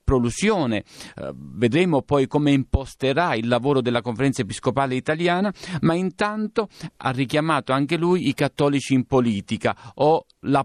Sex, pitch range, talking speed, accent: male, 130-180 Hz, 130 wpm, native